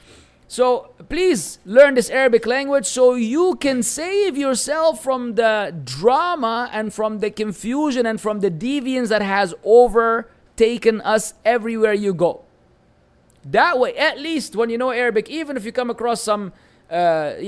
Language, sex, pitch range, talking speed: English, male, 190-265 Hz, 150 wpm